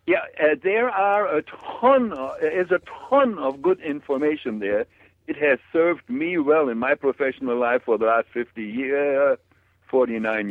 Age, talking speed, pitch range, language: 60-79, 165 wpm, 125-200 Hz, English